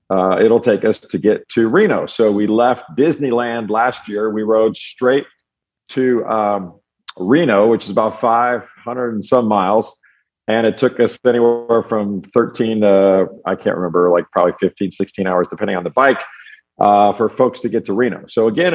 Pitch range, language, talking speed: 105-130 Hz, English, 180 wpm